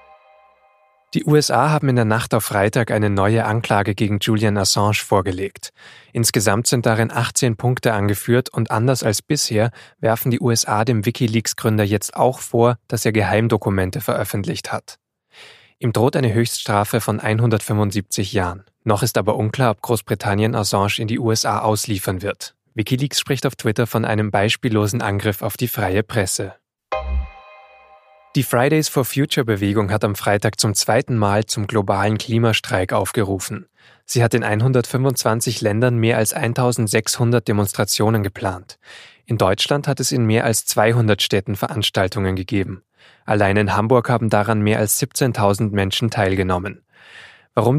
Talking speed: 140 wpm